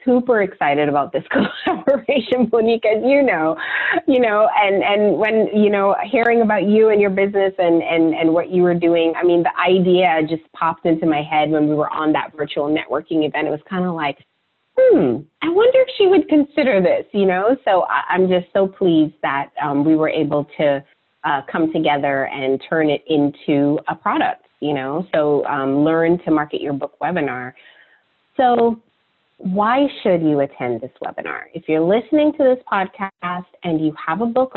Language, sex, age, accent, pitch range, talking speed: English, female, 30-49, American, 155-235 Hz, 190 wpm